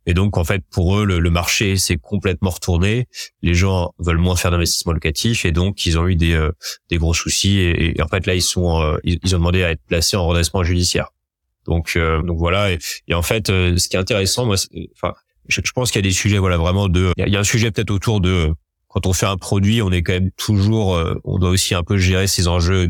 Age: 30-49